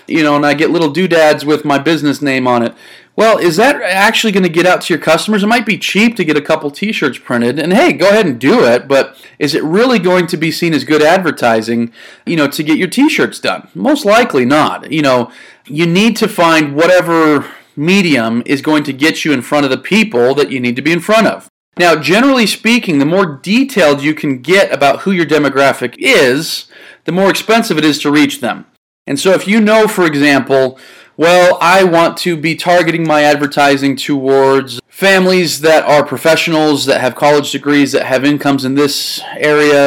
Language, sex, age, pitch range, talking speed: English, male, 40-59, 140-185 Hz, 210 wpm